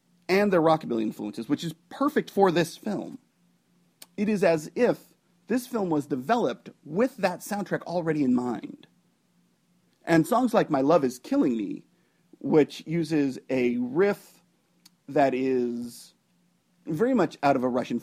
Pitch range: 145-210 Hz